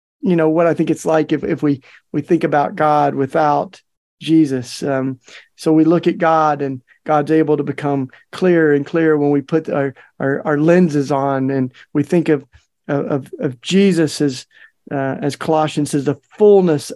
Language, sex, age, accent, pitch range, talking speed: English, male, 40-59, American, 140-165 Hz, 185 wpm